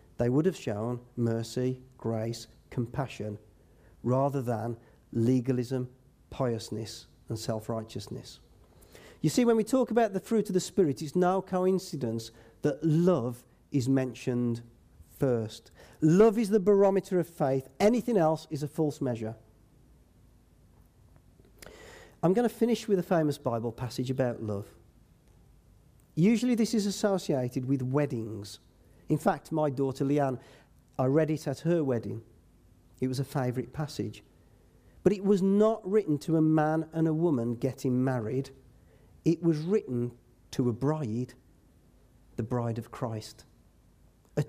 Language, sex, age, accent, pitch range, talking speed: English, male, 40-59, British, 110-155 Hz, 135 wpm